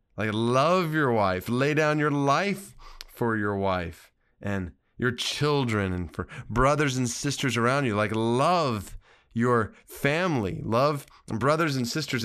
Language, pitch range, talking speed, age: English, 100-140 Hz, 140 wpm, 40-59